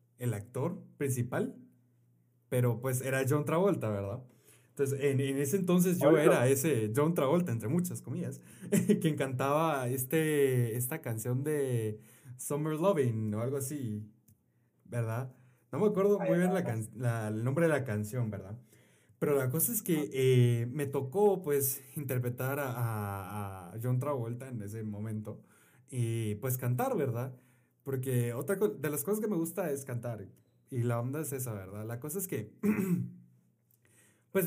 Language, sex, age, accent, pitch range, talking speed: Spanish, male, 20-39, Mexican, 120-185 Hz, 155 wpm